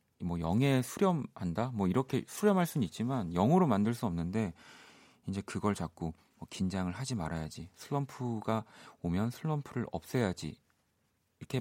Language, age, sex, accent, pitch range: Korean, 40-59, male, native, 90-130 Hz